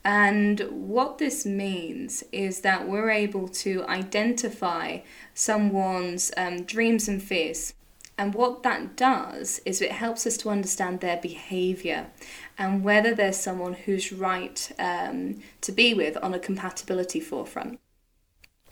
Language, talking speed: English, 130 wpm